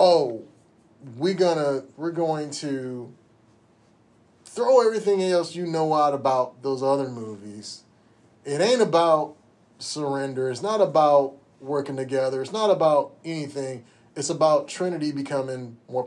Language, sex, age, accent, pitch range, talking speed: English, male, 30-49, American, 130-185 Hz, 125 wpm